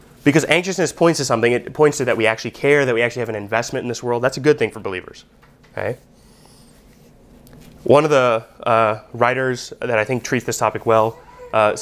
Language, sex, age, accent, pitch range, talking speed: English, male, 20-39, American, 125-165 Hz, 210 wpm